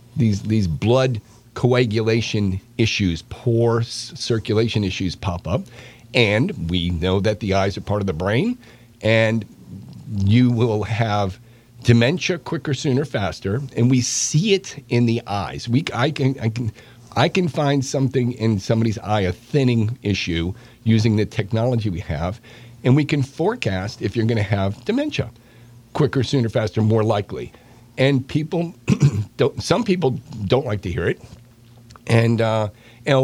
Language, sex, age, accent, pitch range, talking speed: English, male, 50-69, American, 105-130 Hz, 150 wpm